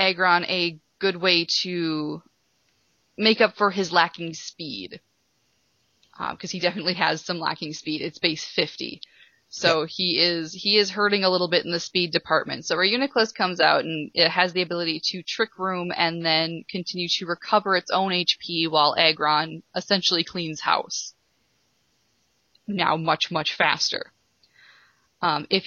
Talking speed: 155 wpm